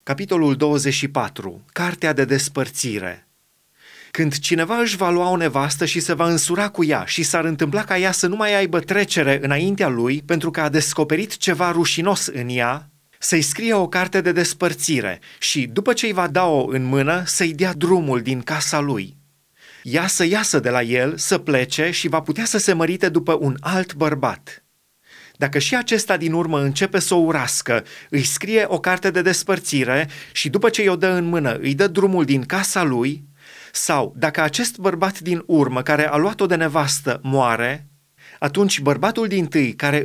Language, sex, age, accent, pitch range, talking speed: Romanian, male, 30-49, native, 145-185 Hz, 180 wpm